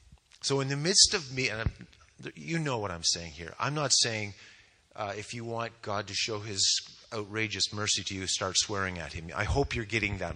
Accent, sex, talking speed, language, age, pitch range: American, male, 215 wpm, English, 30-49, 90-130 Hz